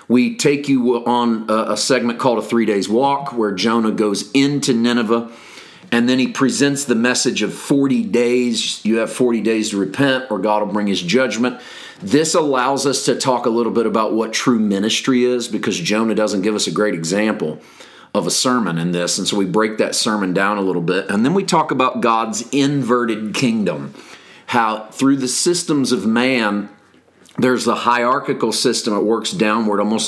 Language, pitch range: English, 105-125 Hz